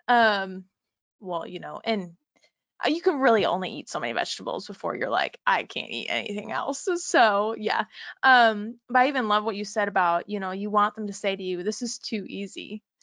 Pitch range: 200-250 Hz